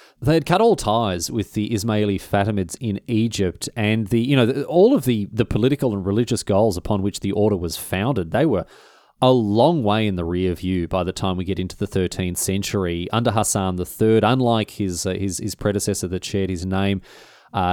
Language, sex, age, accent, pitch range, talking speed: English, male, 30-49, Australian, 95-120 Hz, 205 wpm